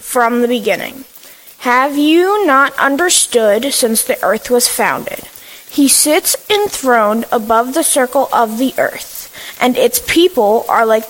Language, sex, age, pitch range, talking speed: English, female, 20-39, 230-280 Hz, 140 wpm